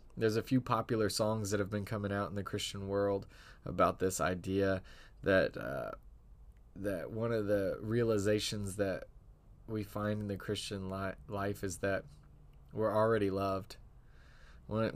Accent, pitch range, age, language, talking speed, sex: American, 100-115 Hz, 20-39, English, 150 wpm, male